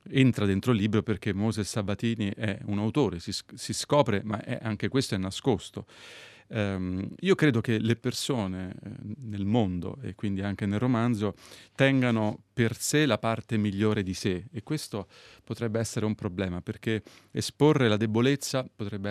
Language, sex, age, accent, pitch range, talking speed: Italian, male, 30-49, native, 100-120 Hz, 155 wpm